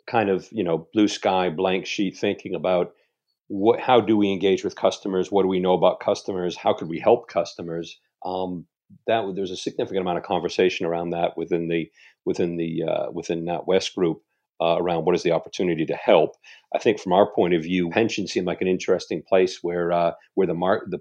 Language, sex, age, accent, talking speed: English, male, 50-69, American, 210 wpm